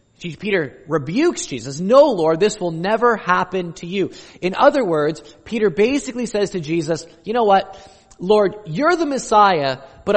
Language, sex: English, male